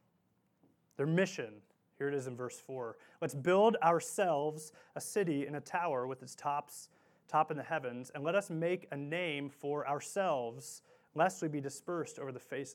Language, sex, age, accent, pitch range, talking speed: English, male, 30-49, American, 155-195 Hz, 180 wpm